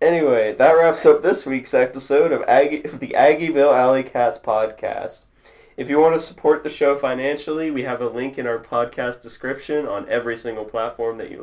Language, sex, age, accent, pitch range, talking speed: English, male, 30-49, American, 110-135 Hz, 185 wpm